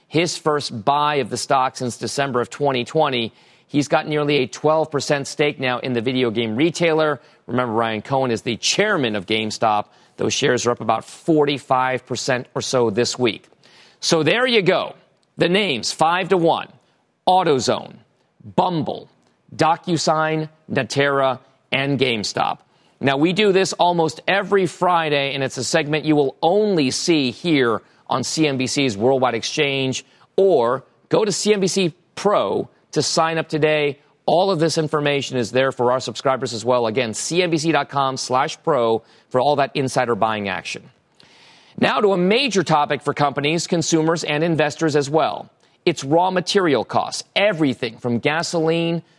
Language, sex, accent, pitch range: English, male, American, 125-160 Hz